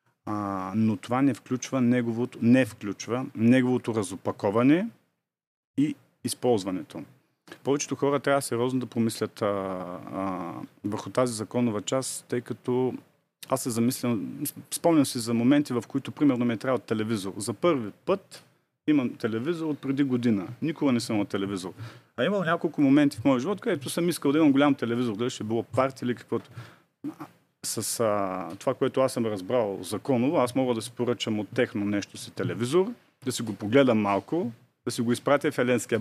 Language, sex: Bulgarian, male